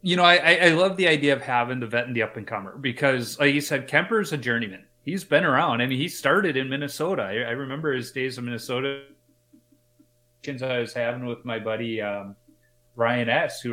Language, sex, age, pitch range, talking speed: English, male, 30-49, 115-140 Hz, 215 wpm